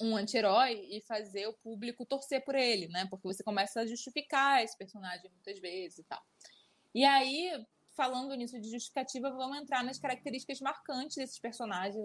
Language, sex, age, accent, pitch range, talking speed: Portuguese, female, 20-39, Brazilian, 195-255 Hz, 170 wpm